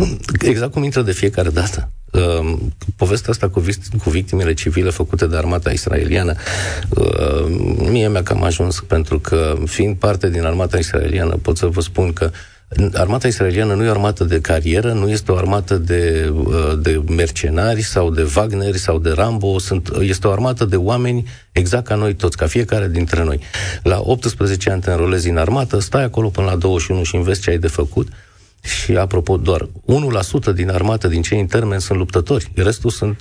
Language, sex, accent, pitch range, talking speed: Romanian, male, native, 90-115 Hz, 175 wpm